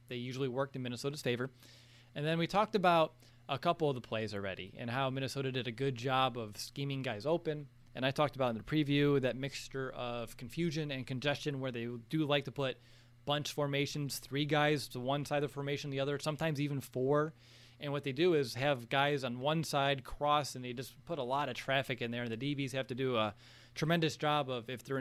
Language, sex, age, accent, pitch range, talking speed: English, male, 20-39, American, 125-150 Hz, 230 wpm